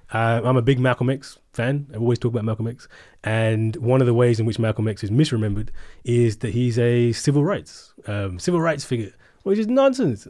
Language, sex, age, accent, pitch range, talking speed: English, male, 20-39, British, 115-145 Hz, 215 wpm